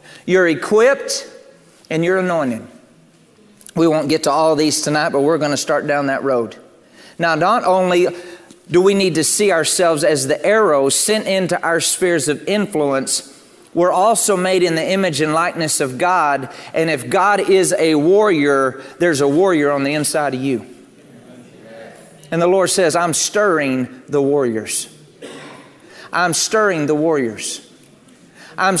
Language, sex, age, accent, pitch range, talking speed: English, male, 40-59, American, 150-185 Hz, 155 wpm